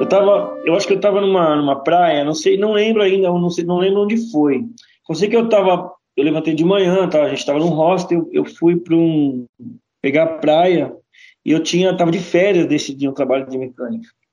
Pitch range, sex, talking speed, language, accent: 165-220 Hz, male, 230 wpm, Portuguese, Brazilian